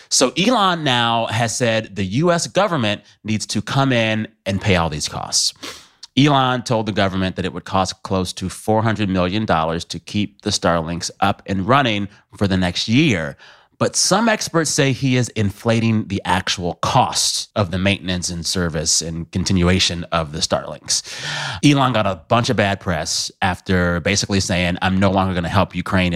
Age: 30-49